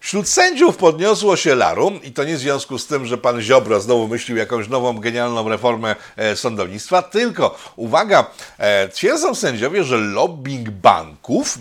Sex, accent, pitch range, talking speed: male, native, 110-140 Hz, 150 wpm